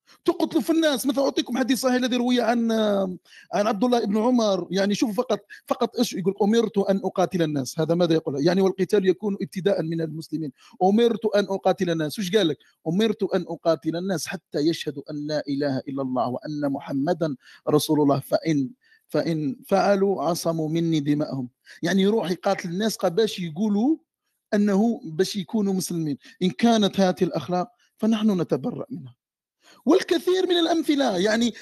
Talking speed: 160 wpm